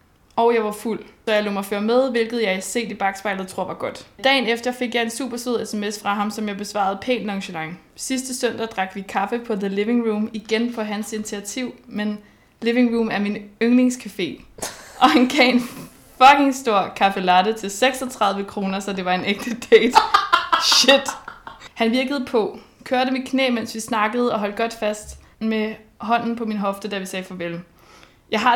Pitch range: 205-250 Hz